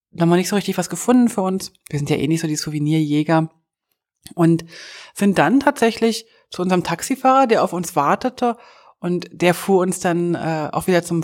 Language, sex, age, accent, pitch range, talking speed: German, female, 30-49, German, 165-205 Hz, 205 wpm